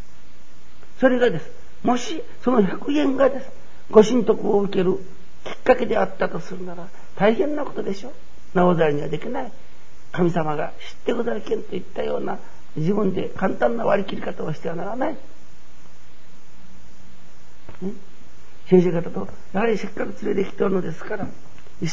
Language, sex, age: Japanese, male, 60-79